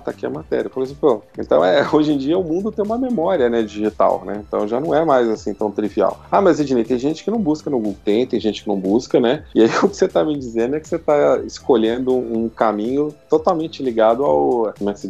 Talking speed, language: 260 wpm, Portuguese